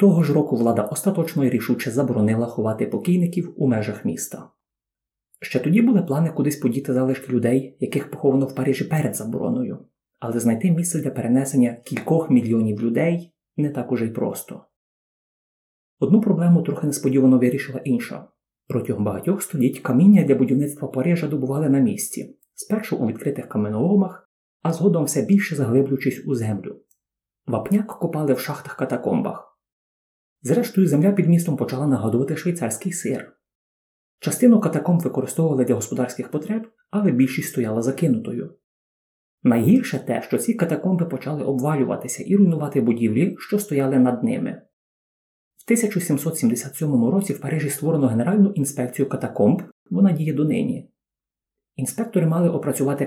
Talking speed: 135 wpm